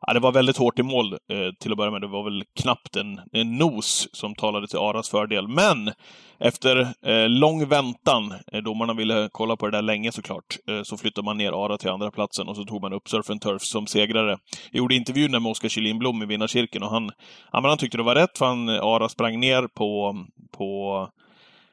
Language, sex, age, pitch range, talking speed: Swedish, male, 30-49, 105-130 Hz, 225 wpm